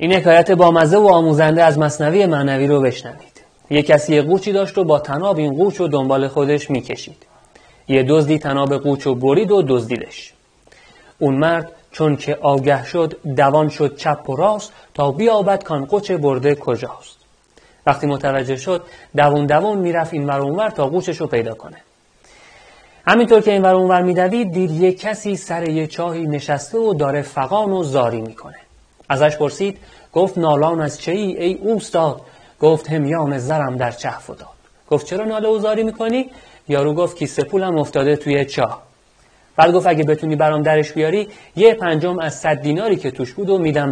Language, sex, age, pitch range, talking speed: Persian, male, 30-49, 140-180 Hz, 165 wpm